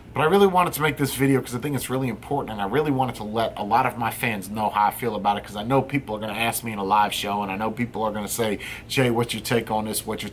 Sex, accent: male, American